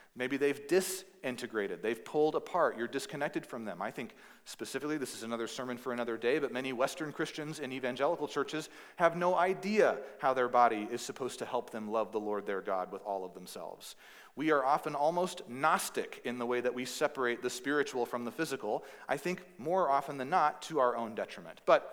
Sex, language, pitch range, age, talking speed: male, English, 120-155 Hz, 40-59, 200 wpm